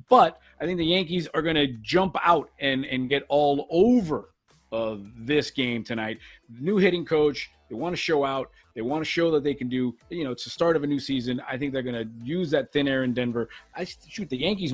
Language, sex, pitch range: English, male, 135-185 Hz